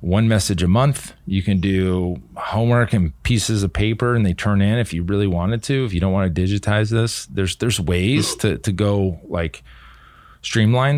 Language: English